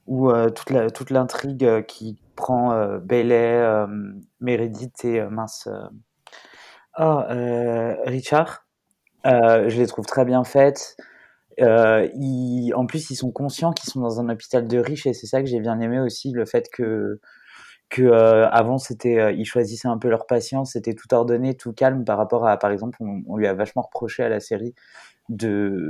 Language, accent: French, French